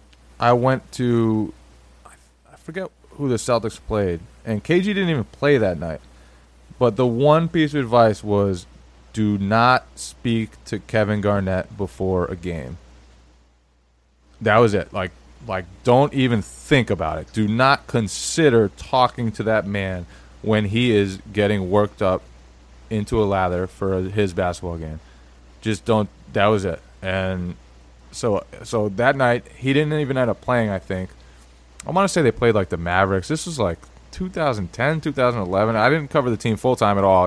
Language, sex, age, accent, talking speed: English, male, 20-39, American, 165 wpm